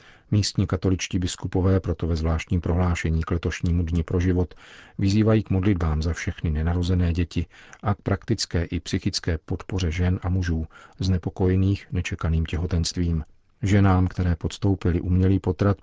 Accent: native